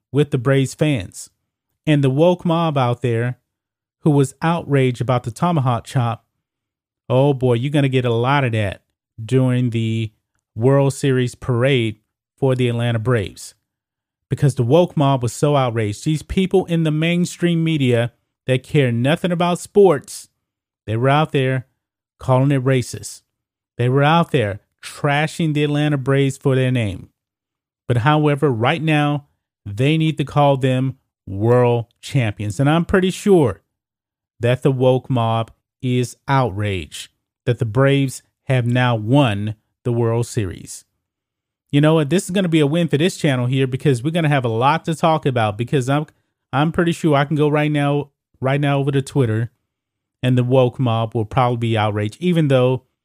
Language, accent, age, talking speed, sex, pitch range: English, American, 30-49, 170 wpm, male, 115-145 Hz